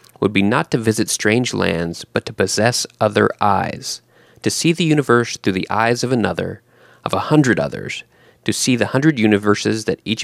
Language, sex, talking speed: English, male, 190 wpm